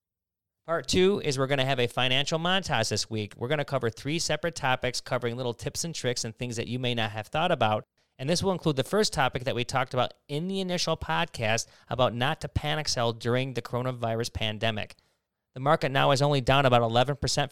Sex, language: male, English